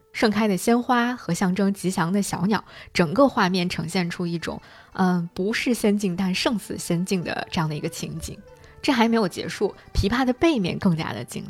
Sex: female